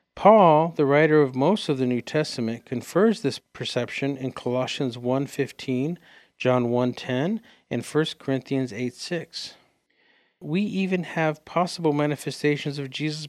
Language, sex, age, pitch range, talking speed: English, male, 50-69, 125-150 Hz, 125 wpm